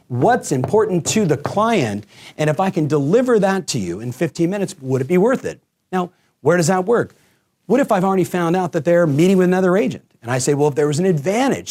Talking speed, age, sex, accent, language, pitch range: 240 wpm, 40-59, male, American, English, 140-195 Hz